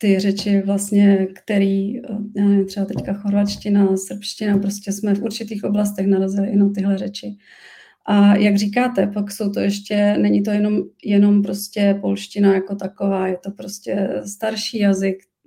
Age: 30-49